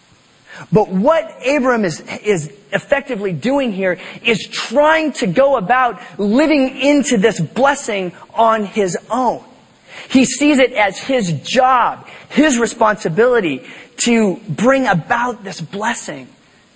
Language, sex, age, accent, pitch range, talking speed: English, male, 30-49, American, 190-240 Hz, 120 wpm